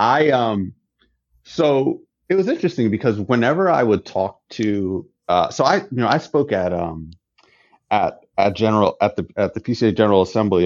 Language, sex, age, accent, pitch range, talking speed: English, male, 30-49, American, 90-120 Hz, 175 wpm